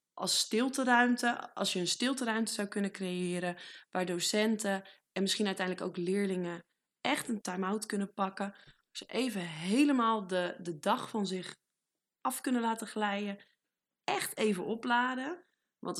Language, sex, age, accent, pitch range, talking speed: Dutch, female, 20-39, Dutch, 180-225 Hz, 140 wpm